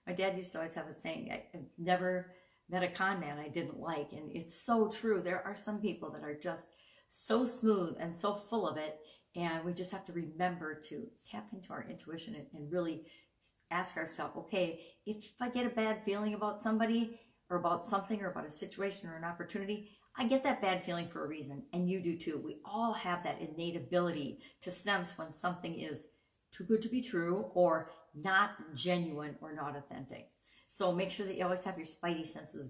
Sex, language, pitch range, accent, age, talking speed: female, English, 170-200 Hz, American, 50-69, 205 wpm